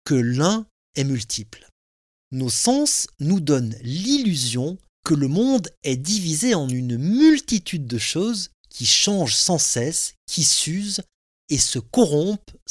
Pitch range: 120-195 Hz